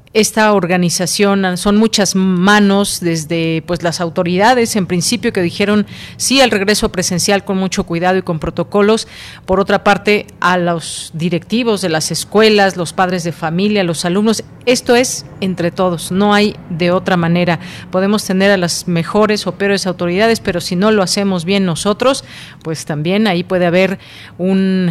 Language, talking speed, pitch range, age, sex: Spanish, 165 wpm, 170-205 Hz, 40-59, female